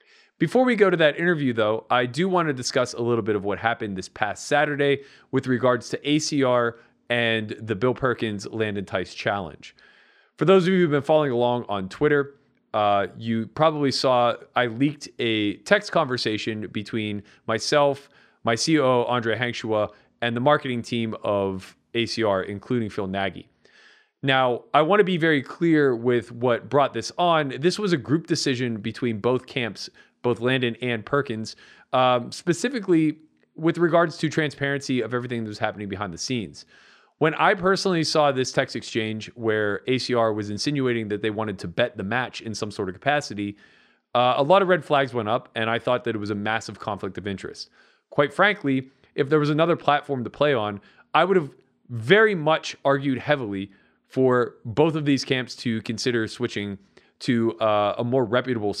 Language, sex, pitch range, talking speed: English, male, 110-145 Hz, 180 wpm